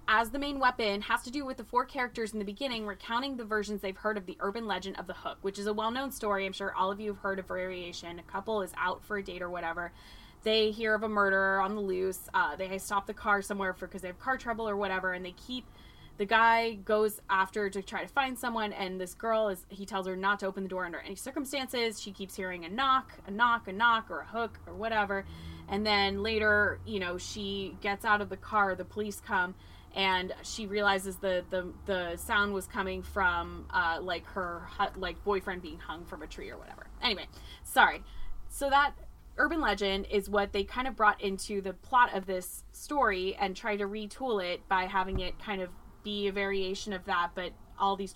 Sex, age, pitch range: female, 20-39, 185-215 Hz